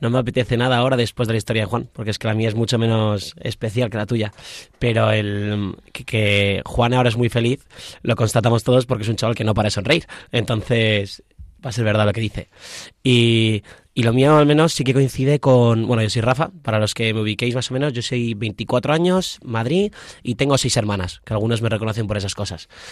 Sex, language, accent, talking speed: male, Spanish, Spanish, 235 wpm